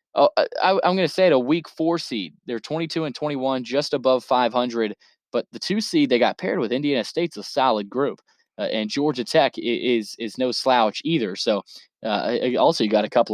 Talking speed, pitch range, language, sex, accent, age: 210 wpm, 115-160 Hz, English, male, American, 20-39